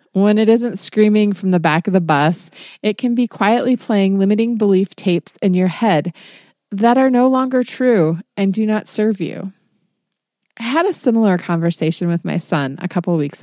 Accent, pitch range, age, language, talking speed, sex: American, 175-230 Hz, 30-49, English, 190 wpm, female